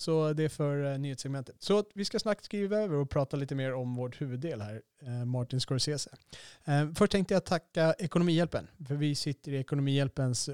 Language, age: Swedish, 30-49